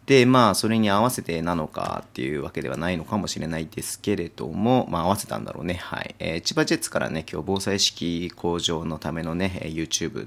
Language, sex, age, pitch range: Japanese, male, 30-49, 85-110 Hz